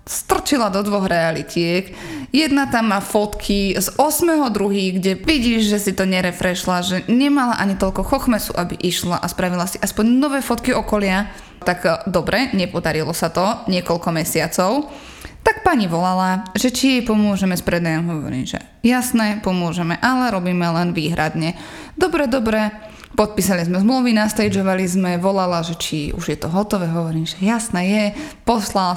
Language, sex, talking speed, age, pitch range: Slovak, female, 150 wpm, 20-39, 185-260 Hz